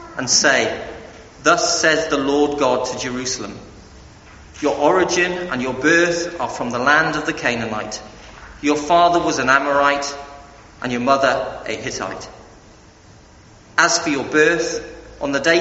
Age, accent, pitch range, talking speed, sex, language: 40-59, British, 110-165 Hz, 145 wpm, male, English